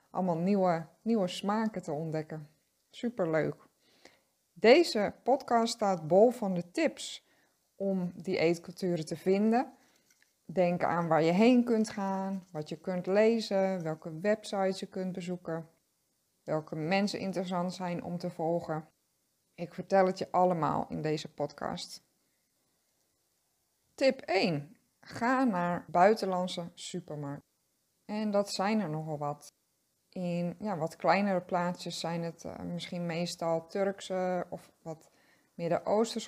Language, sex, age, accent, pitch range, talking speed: Dutch, female, 20-39, Dutch, 165-195 Hz, 125 wpm